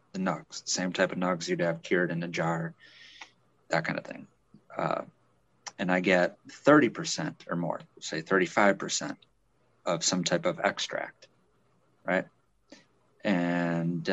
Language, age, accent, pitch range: English, 30-49, American, 85-100 Hz